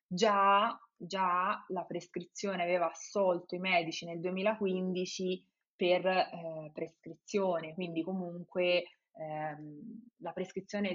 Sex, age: female, 20-39